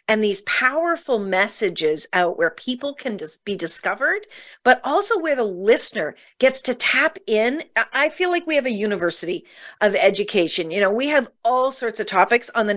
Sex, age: female, 40-59